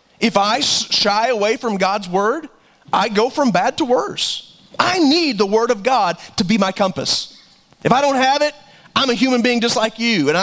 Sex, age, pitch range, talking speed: male, 30-49, 175-245 Hz, 205 wpm